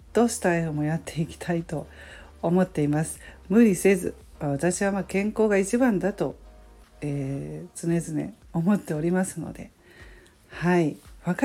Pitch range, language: 160-215 Hz, Japanese